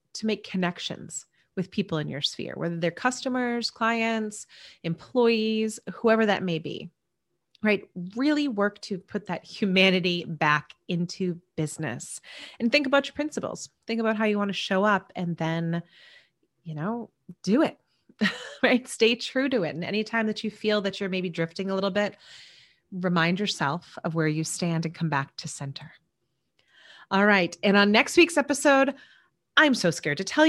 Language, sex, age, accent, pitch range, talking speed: English, female, 30-49, American, 165-245 Hz, 170 wpm